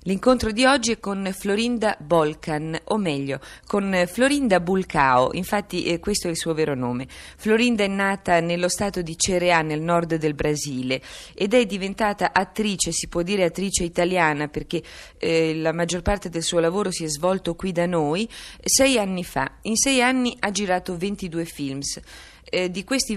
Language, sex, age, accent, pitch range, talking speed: Italian, female, 30-49, native, 170-210 Hz, 175 wpm